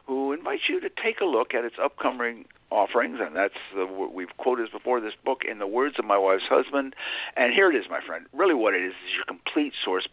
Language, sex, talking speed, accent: English, male, 235 wpm, American